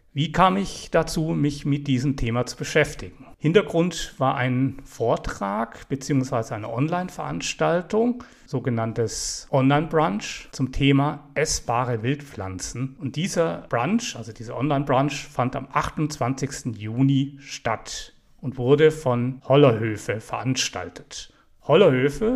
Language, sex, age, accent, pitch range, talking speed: German, male, 40-59, German, 120-155 Hz, 105 wpm